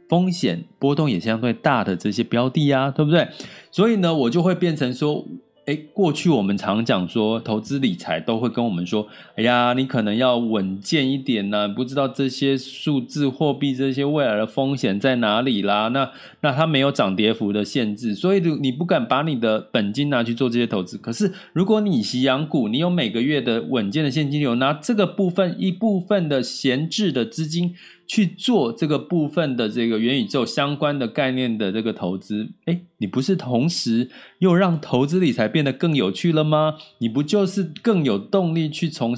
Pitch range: 120-170 Hz